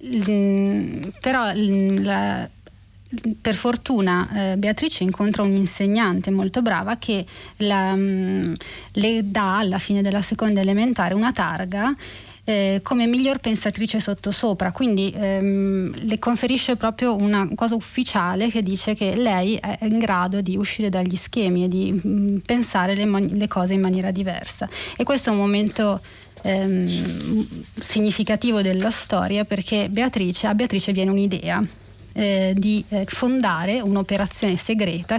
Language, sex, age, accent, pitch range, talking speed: Italian, female, 30-49, native, 190-220 Hz, 130 wpm